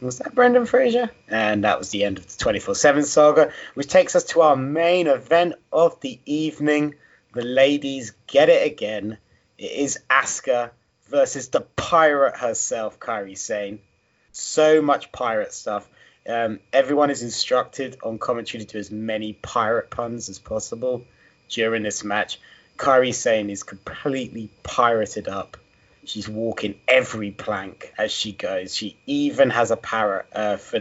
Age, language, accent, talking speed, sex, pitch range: 30-49, English, British, 150 wpm, male, 110-145 Hz